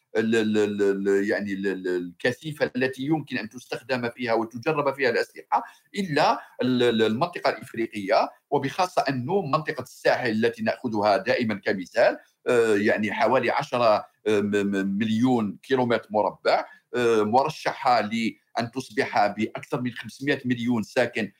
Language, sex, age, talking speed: Arabic, male, 50-69, 100 wpm